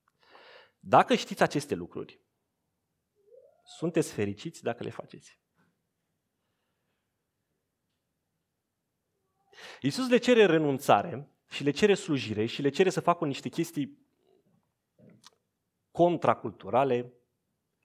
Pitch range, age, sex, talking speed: 135-205 Hz, 30-49, male, 85 wpm